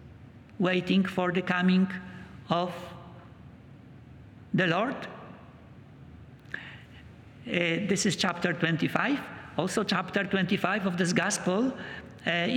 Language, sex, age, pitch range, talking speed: English, male, 50-69, 175-220 Hz, 90 wpm